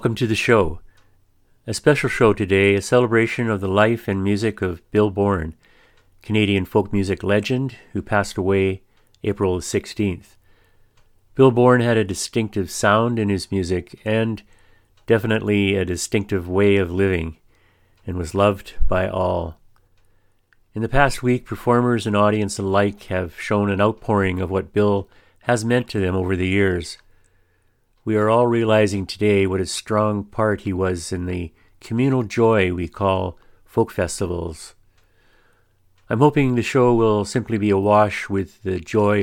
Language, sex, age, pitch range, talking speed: English, male, 40-59, 95-110 Hz, 155 wpm